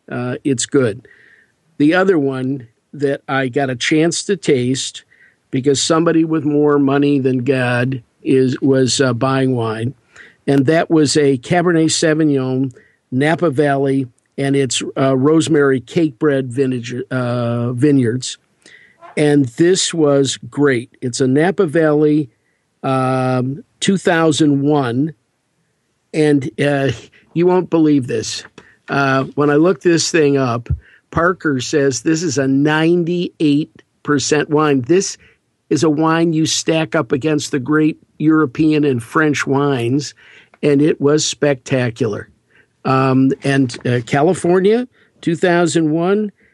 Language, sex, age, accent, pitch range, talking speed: English, male, 50-69, American, 130-155 Hz, 120 wpm